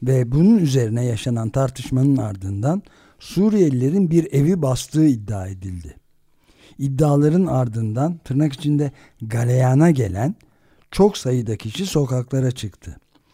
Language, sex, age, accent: Turkish, male, 60-79, native